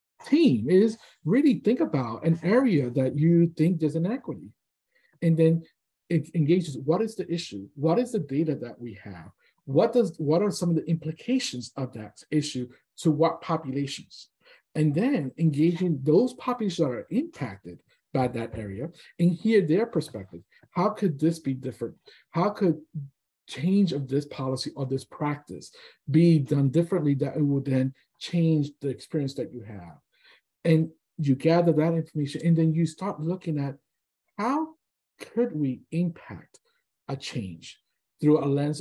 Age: 50-69